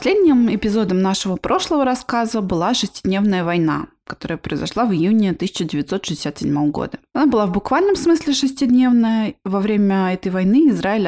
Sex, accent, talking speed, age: female, native, 135 wpm, 20-39